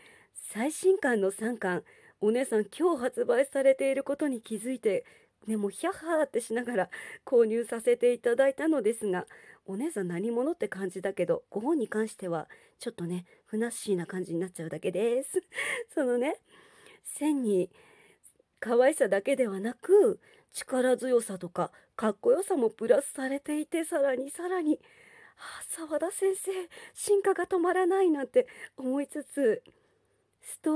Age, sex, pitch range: 40-59, female, 225-370 Hz